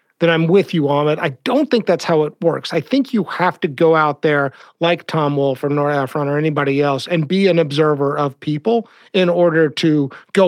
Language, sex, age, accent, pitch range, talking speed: English, male, 40-59, American, 145-190 Hz, 230 wpm